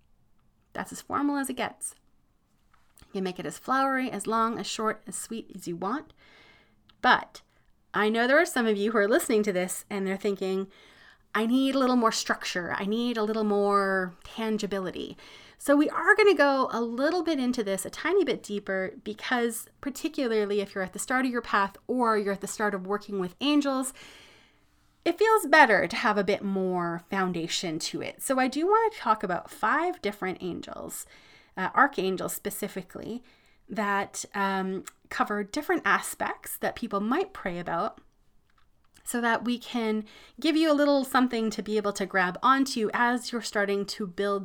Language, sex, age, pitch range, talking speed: English, female, 30-49, 200-260 Hz, 185 wpm